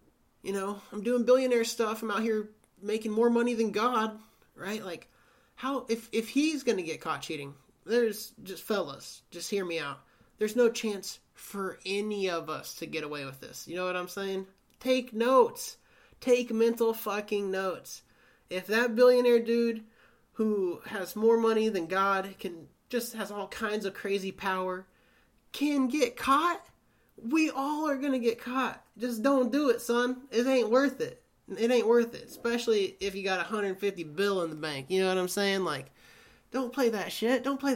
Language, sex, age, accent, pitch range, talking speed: English, male, 30-49, American, 190-245 Hz, 185 wpm